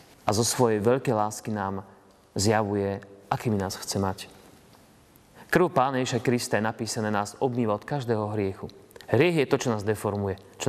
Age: 30-49